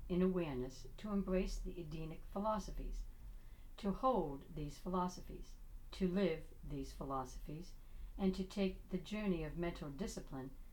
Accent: American